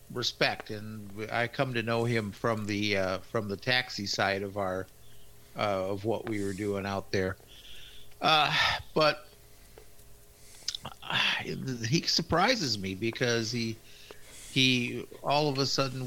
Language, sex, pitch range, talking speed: English, male, 110-150 Hz, 140 wpm